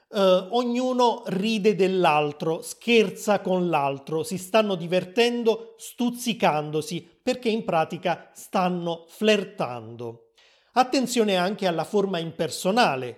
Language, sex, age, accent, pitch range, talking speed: Italian, male, 30-49, native, 165-225 Hz, 90 wpm